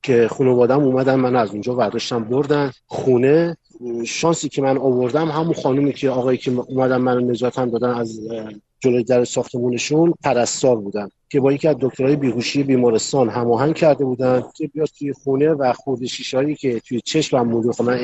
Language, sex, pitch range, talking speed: Persian, male, 125-150 Hz, 170 wpm